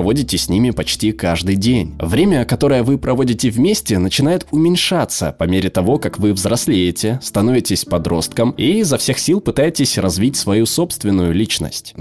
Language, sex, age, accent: Russian, male, 20-39, native